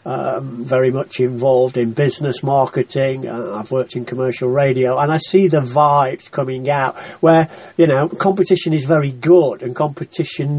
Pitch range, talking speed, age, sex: 130-170 Hz, 165 wpm, 40-59, male